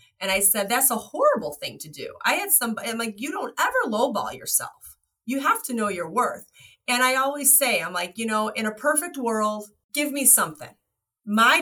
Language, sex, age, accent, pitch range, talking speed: English, female, 30-49, American, 190-260 Hz, 210 wpm